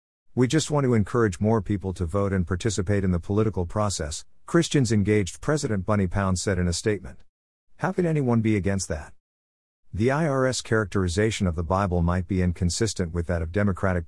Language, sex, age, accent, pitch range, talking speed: English, male, 50-69, American, 85-110 Hz, 185 wpm